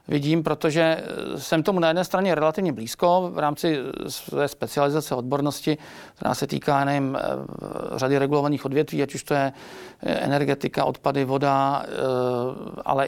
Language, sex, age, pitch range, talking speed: Czech, male, 40-59, 140-170 Hz, 135 wpm